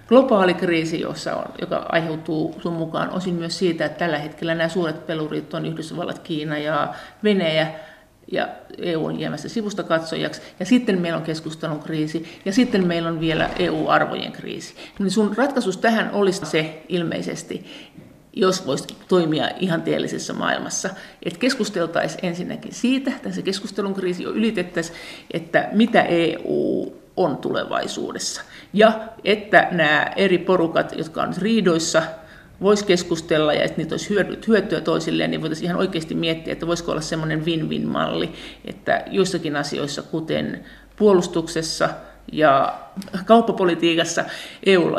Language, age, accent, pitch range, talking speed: Finnish, 50-69, native, 165-200 Hz, 135 wpm